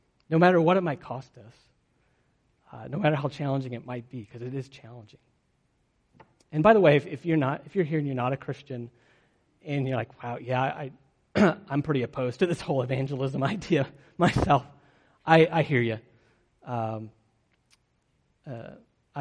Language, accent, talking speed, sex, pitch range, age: English, American, 175 wpm, male, 120-145 Hz, 40-59